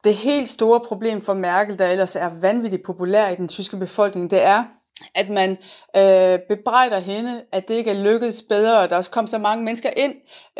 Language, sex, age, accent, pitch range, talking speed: Danish, female, 30-49, native, 180-215 Hz, 205 wpm